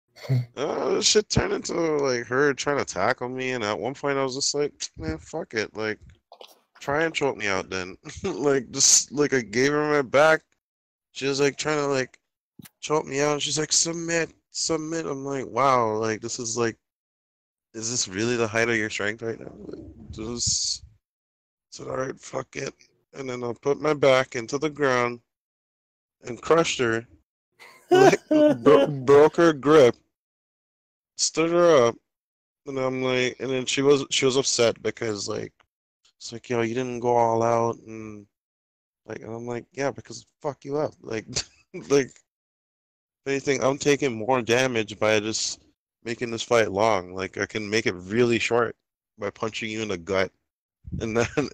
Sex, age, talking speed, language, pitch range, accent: male, 20-39, 180 wpm, English, 110-140 Hz, American